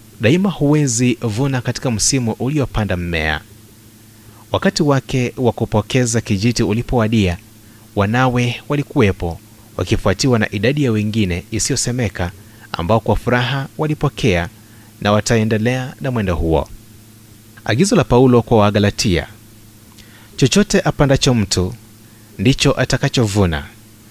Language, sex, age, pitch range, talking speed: Swahili, male, 30-49, 105-125 Hz, 95 wpm